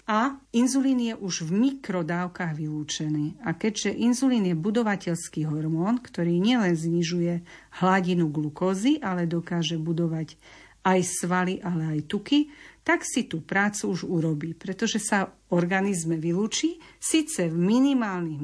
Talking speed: 130 wpm